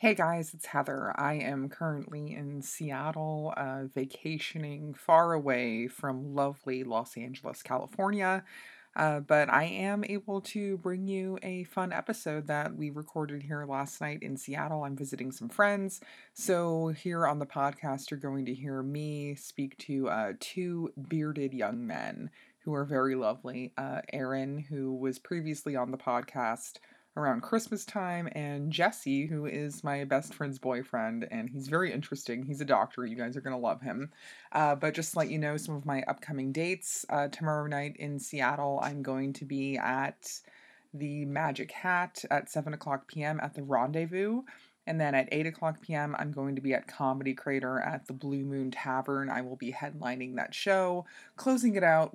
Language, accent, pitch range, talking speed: English, American, 135-165 Hz, 175 wpm